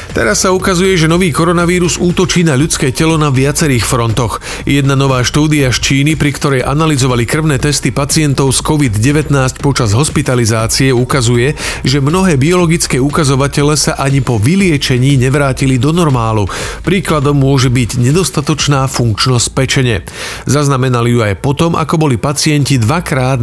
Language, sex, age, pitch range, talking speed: Slovak, male, 40-59, 125-155 Hz, 140 wpm